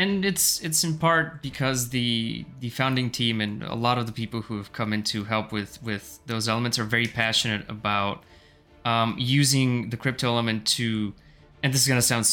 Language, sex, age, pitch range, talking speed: English, male, 20-39, 110-135 Hz, 200 wpm